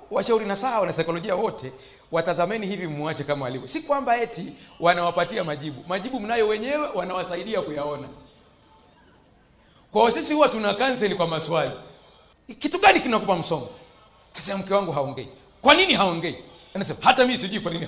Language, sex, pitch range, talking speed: Swahili, male, 190-300 Hz, 145 wpm